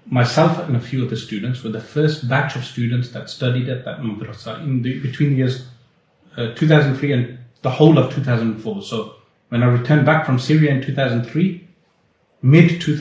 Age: 30-49